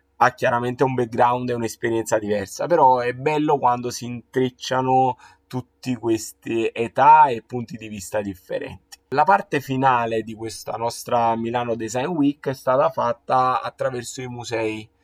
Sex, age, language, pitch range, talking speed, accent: male, 20-39, Italian, 115-135 Hz, 145 wpm, native